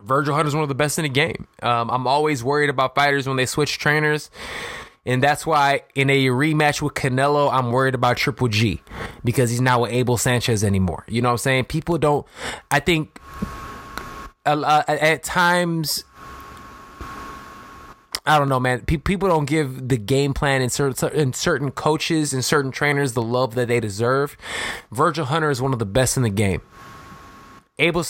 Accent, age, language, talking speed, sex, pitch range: American, 20-39, English, 180 wpm, male, 125-155 Hz